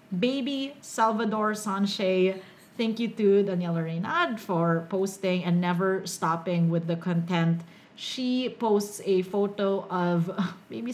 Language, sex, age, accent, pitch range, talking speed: English, female, 30-49, Filipino, 175-215 Hz, 120 wpm